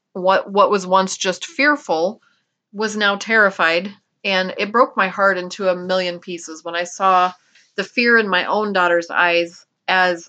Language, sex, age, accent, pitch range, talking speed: English, female, 30-49, American, 180-210 Hz, 170 wpm